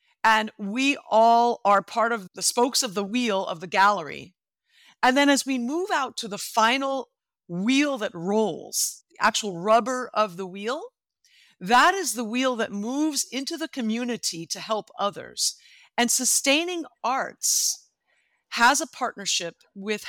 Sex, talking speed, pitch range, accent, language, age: female, 150 wpm, 205-275 Hz, American, English, 50-69